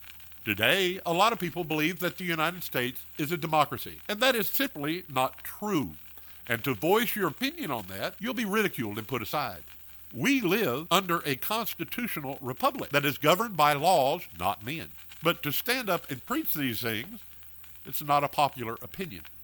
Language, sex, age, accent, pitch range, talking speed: English, male, 50-69, American, 110-170 Hz, 180 wpm